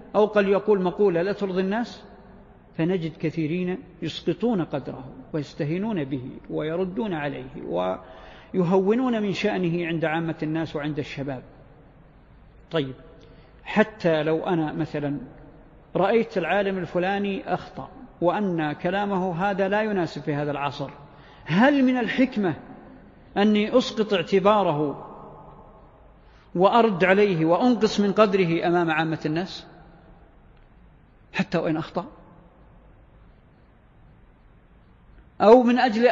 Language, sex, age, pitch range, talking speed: Arabic, male, 50-69, 150-200 Hz, 100 wpm